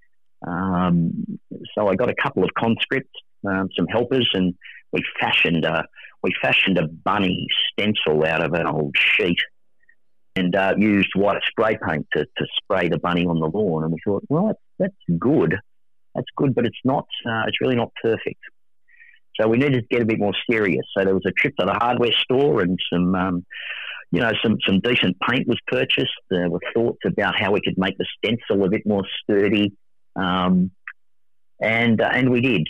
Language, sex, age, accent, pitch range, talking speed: English, male, 40-59, Australian, 90-110 Hz, 195 wpm